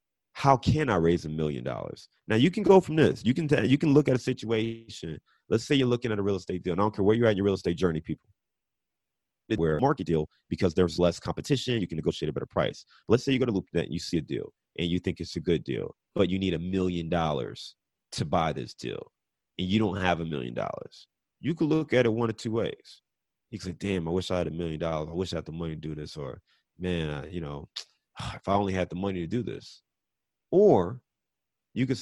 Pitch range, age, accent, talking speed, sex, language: 85-115 Hz, 30-49, American, 260 wpm, male, English